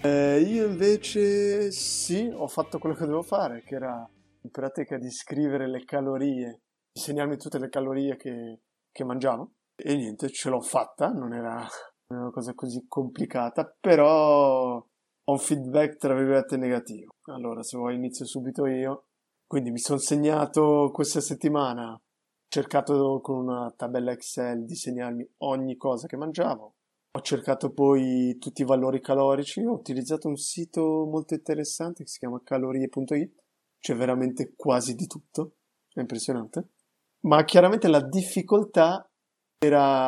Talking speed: 145 wpm